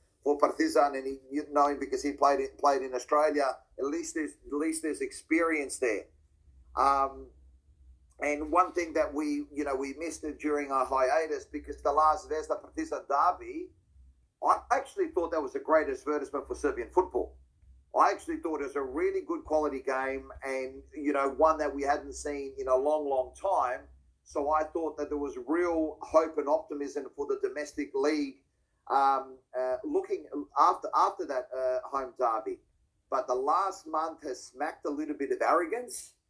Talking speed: 180 wpm